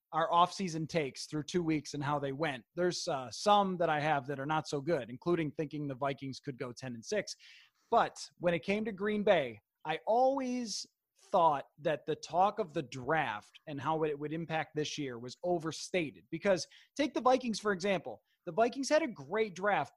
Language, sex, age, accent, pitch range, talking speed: English, male, 20-39, American, 155-215 Hz, 200 wpm